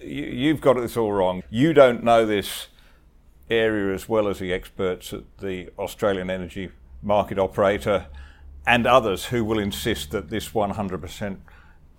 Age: 50-69